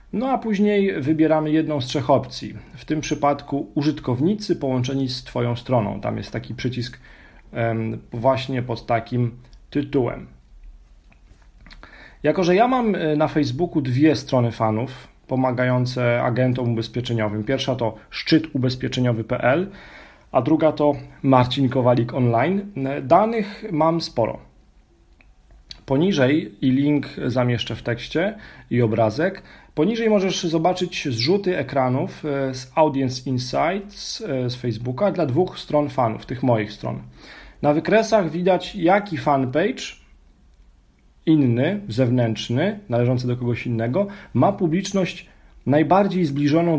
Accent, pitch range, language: native, 120-160 Hz, Polish